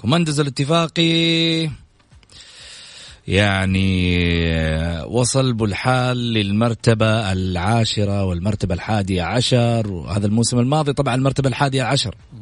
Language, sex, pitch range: English, male, 110-170 Hz